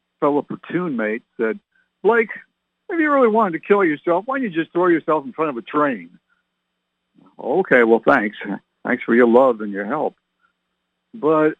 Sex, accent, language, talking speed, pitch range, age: male, American, English, 175 wpm, 115-190 Hz, 60-79